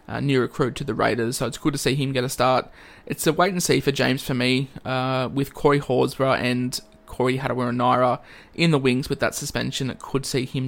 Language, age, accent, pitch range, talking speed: English, 20-39, Australian, 125-145 Hz, 220 wpm